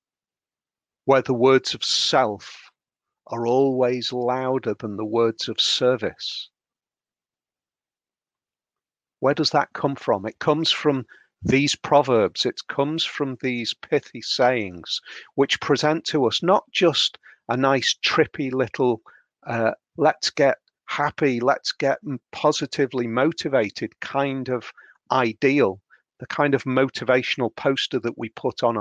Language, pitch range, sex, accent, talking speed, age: English, 120-145 Hz, male, British, 125 wpm, 40-59